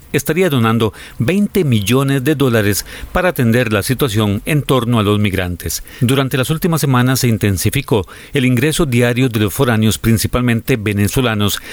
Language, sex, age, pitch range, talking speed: Spanish, male, 40-59, 110-140 Hz, 150 wpm